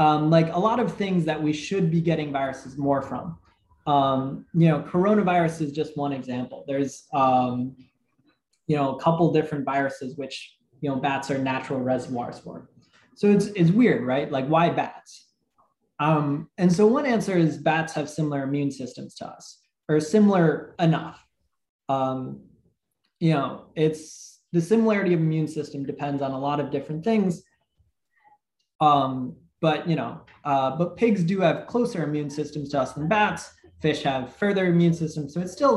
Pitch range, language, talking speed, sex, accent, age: 140-180 Hz, English, 175 wpm, male, American, 20-39